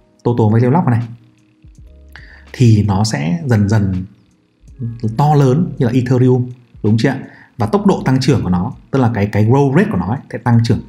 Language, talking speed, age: Vietnamese, 200 wpm, 30-49